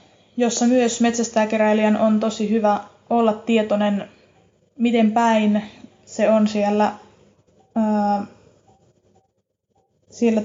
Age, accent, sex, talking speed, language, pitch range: 20-39, native, female, 80 wpm, Finnish, 210-230 Hz